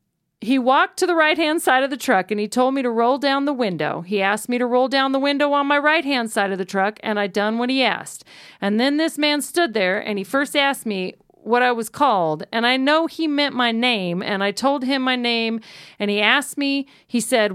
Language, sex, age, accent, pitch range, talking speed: English, female, 40-59, American, 205-285 Hz, 255 wpm